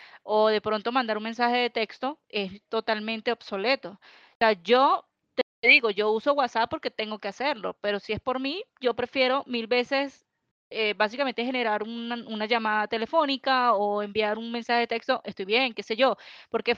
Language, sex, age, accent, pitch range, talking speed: Spanish, female, 20-39, American, 220-265 Hz, 180 wpm